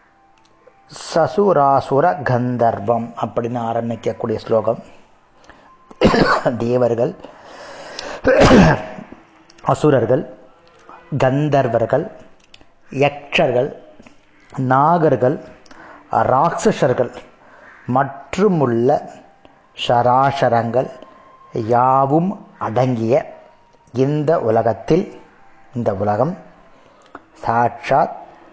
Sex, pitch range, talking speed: male, 115-140 Hz, 40 wpm